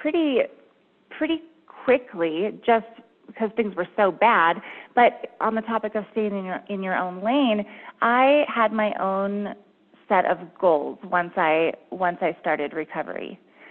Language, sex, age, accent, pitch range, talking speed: English, female, 20-39, American, 180-215 Hz, 150 wpm